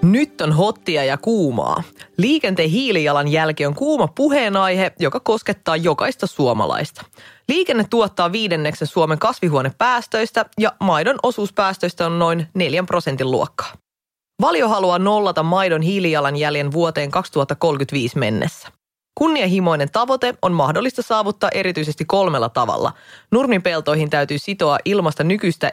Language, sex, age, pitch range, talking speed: English, female, 20-39, 155-205 Hz, 110 wpm